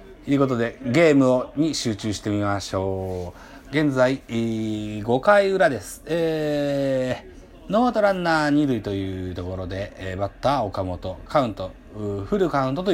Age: 40-59